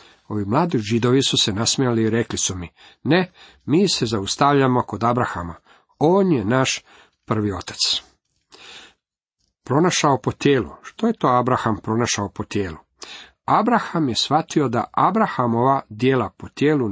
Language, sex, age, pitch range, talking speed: Croatian, male, 50-69, 115-140 Hz, 140 wpm